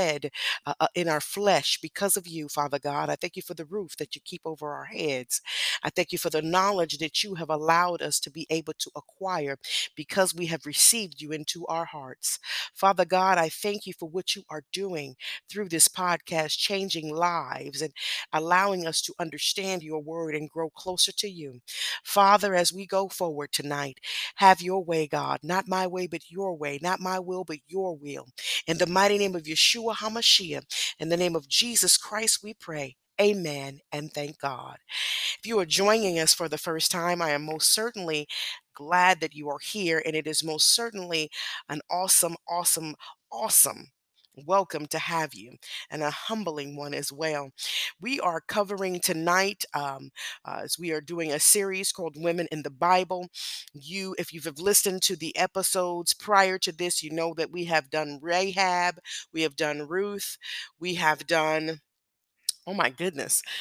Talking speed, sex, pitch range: 185 wpm, female, 155-185 Hz